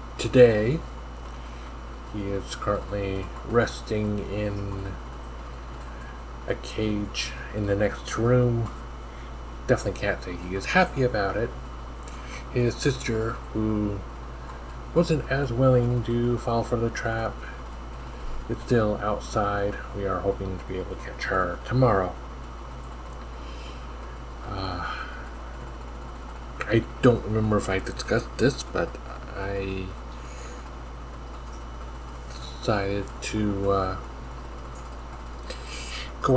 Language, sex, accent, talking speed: English, male, American, 95 wpm